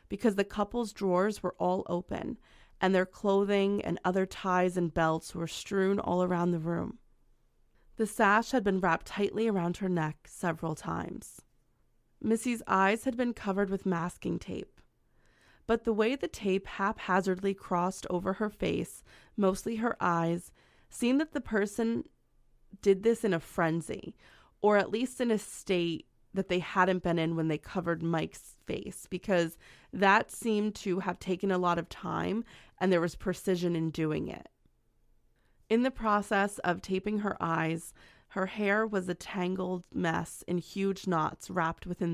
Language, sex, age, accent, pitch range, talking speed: English, female, 20-39, American, 175-205 Hz, 160 wpm